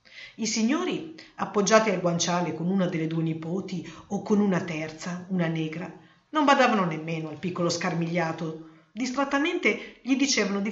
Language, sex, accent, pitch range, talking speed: Italian, female, native, 165-225 Hz, 145 wpm